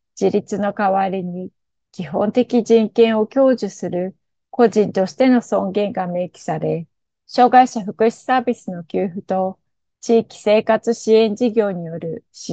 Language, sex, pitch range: Japanese, female, 185-235 Hz